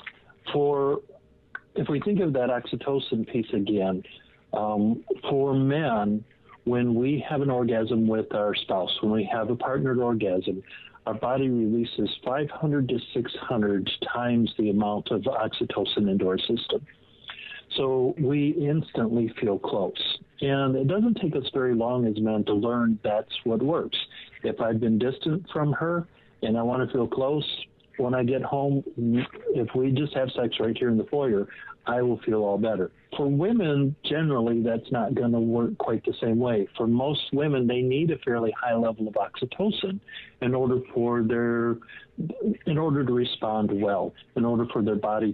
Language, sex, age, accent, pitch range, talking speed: English, male, 50-69, American, 110-135 Hz, 165 wpm